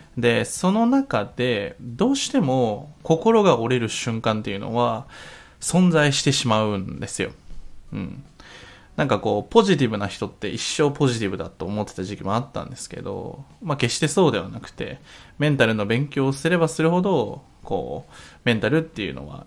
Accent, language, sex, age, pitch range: native, Japanese, male, 20-39, 105-135 Hz